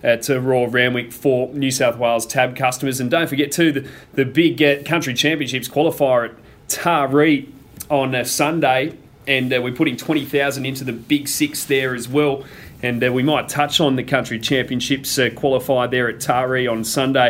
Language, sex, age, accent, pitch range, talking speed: English, male, 30-49, Australian, 115-140 Hz, 185 wpm